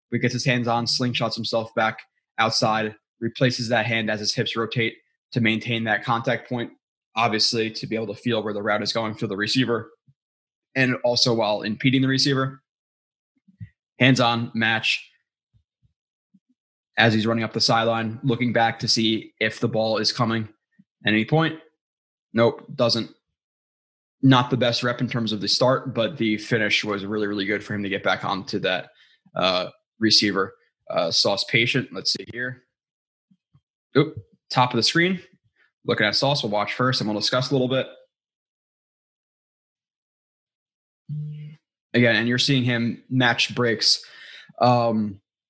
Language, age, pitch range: English, 20-39, 110-130 Hz